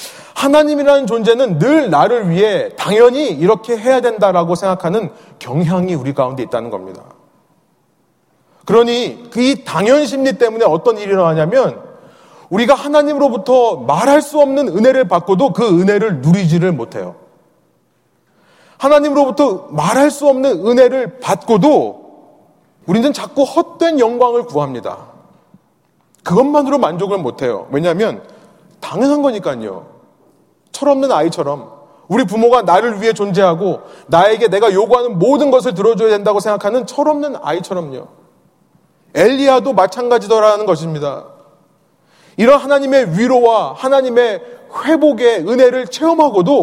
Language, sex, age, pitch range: Korean, male, 30-49, 175-275 Hz